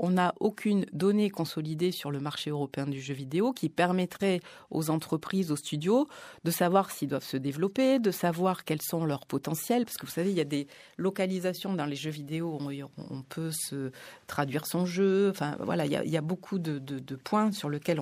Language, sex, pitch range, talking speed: French, female, 150-185 Hz, 215 wpm